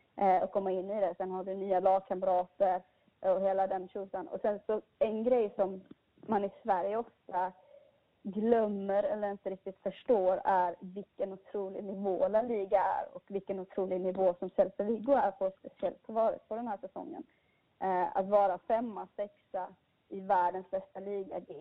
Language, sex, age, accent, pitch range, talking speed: English, female, 20-39, Swedish, 185-205 Hz, 160 wpm